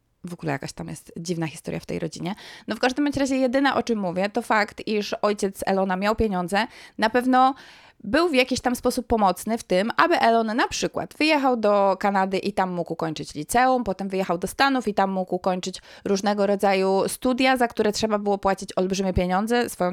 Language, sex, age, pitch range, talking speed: Polish, female, 20-39, 180-240 Hz, 200 wpm